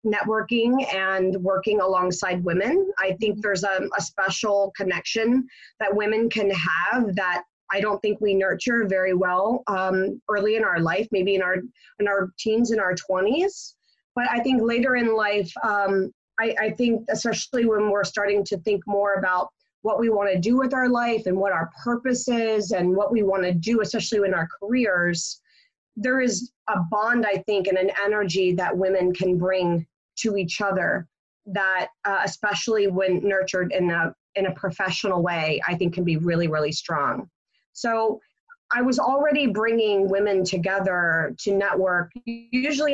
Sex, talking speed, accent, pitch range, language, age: female, 170 wpm, American, 190-235 Hz, English, 30-49